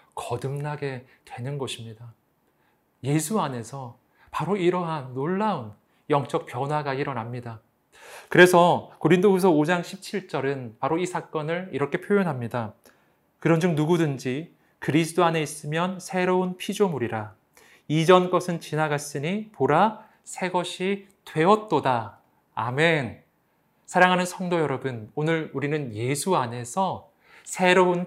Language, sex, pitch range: Korean, male, 125-180 Hz